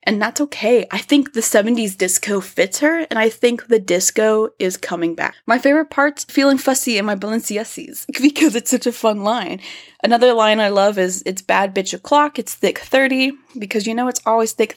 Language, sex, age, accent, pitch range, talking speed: English, female, 20-39, American, 195-250 Hz, 205 wpm